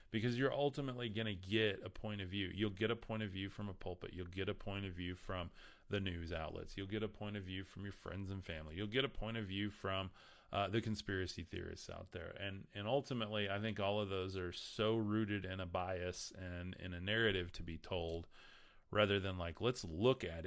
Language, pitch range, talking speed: English, 90-105 Hz, 230 wpm